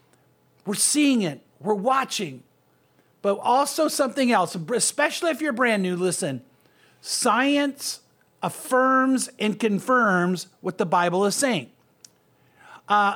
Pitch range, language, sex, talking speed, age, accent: 190-255 Hz, English, male, 115 wpm, 50-69, American